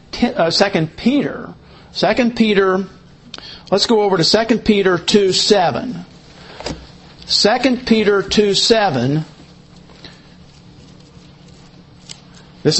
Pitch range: 155-195 Hz